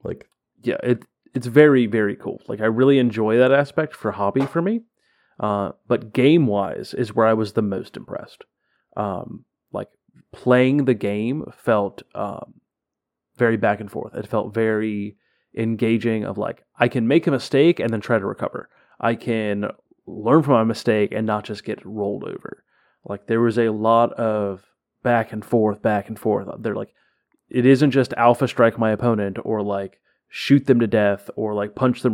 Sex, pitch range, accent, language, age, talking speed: male, 105-125 Hz, American, English, 30-49, 180 wpm